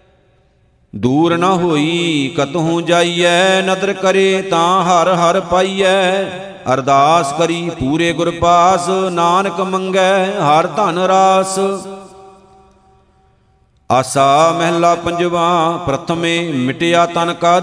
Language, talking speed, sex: Punjabi, 90 wpm, male